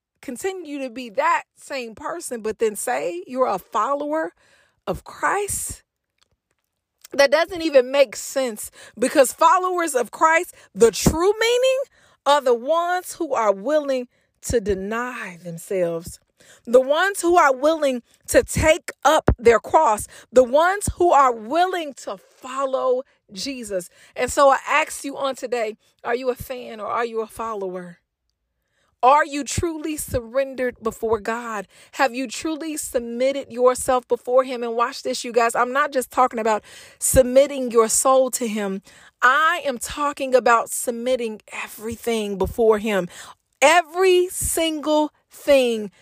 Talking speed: 140 wpm